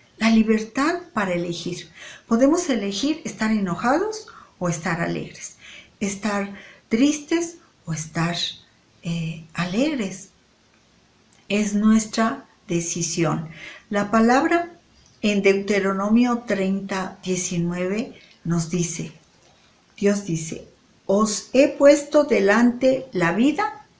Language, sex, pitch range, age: Spanish, female, 185-240 Hz, 50-69